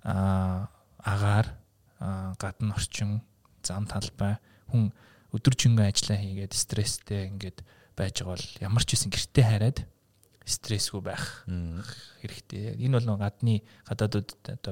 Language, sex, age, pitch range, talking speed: English, male, 20-39, 100-115 Hz, 105 wpm